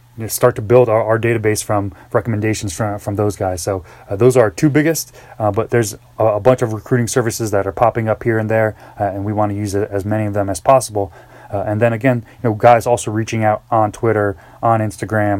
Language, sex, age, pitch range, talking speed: English, male, 20-39, 105-125 Hz, 240 wpm